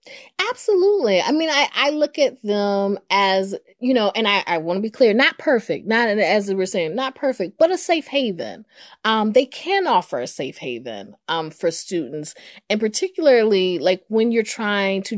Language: English